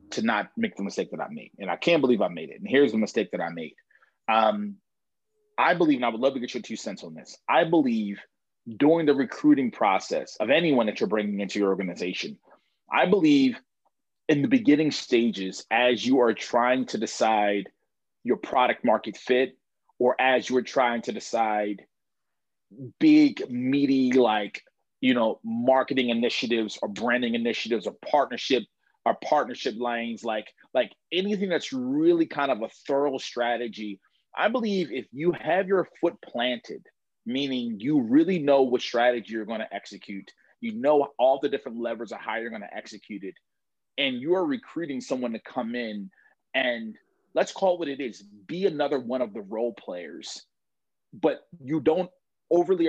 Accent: American